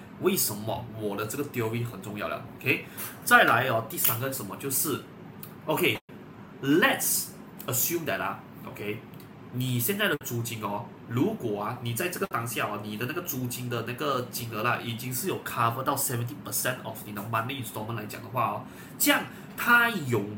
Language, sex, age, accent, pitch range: Chinese, male, 30-49, native, 115-155 Hz